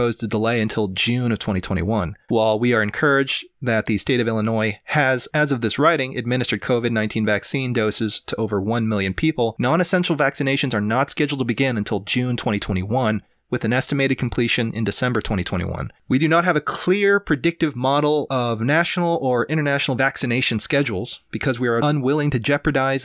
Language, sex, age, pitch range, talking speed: English, male, 30-49, 105-135 Hz, 170 wpm